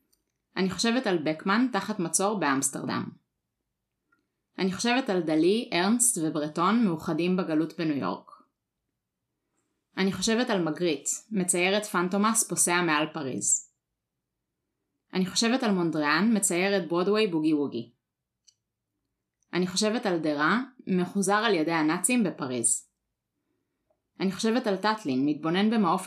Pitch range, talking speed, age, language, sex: 160-210 Hz, 115 wpm, 20-39, Hebrew, female